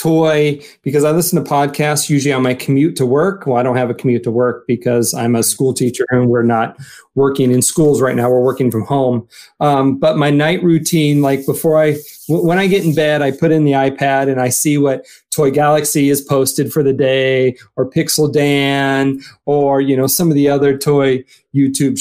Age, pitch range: 30-49, 130-150 Hz